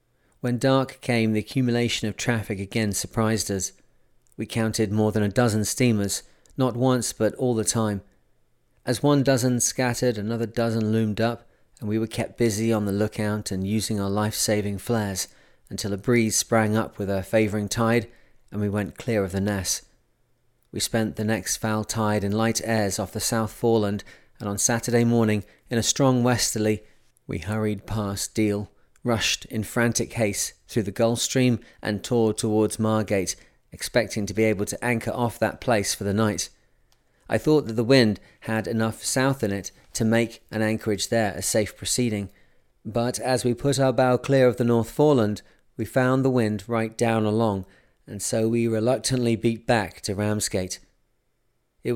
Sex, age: male, 40-59